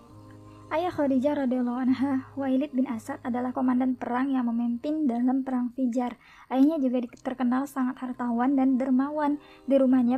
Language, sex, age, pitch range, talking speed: Indonesian, male, 20-39, 240-275 Hz, 135 wpm